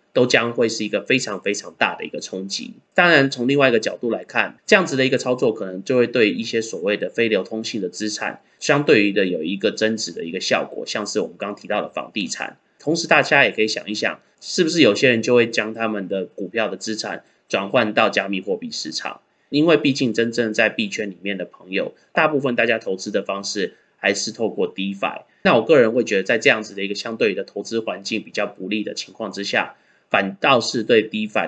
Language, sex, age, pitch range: Chinese, male, 20-39, 100-125 Hz